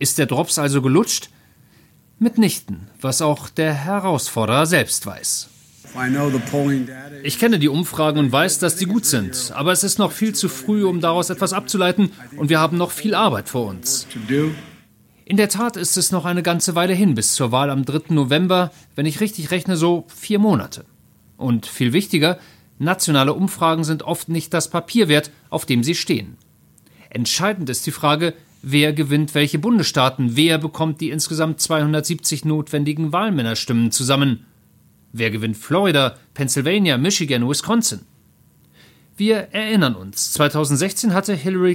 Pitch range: 135-180 Hz